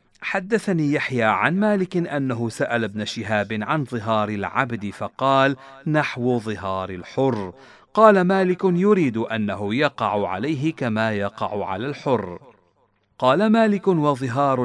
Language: Arabic